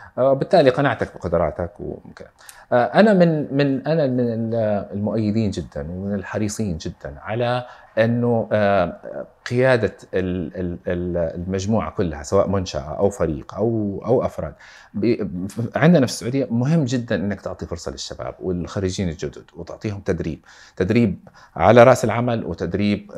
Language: Arabic